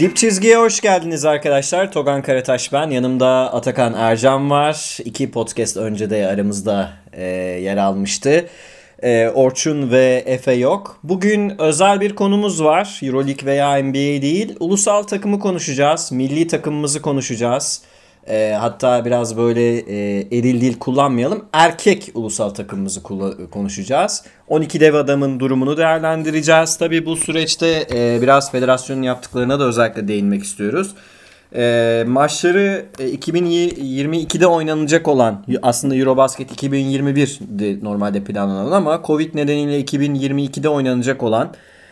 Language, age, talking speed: Turkish, 30-49, 115 wpm